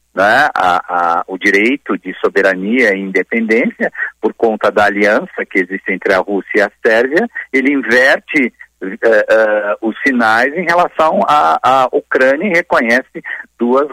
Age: 50-69